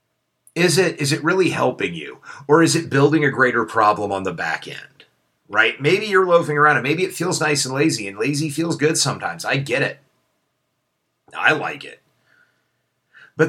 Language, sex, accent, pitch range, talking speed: English, male, American, 95-150 Hz, 185 wpm